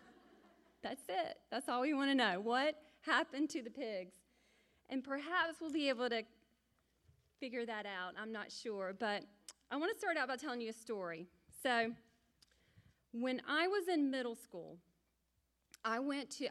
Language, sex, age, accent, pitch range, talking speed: English, female, 30-49, American, 215-275 Hz, 165 wpm